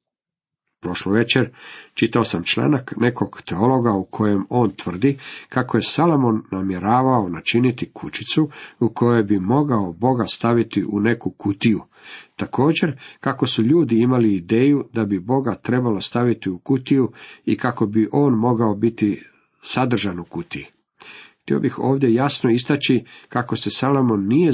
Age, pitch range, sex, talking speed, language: 50-69, 105-135 Hz, male, 140 wpm, Croatian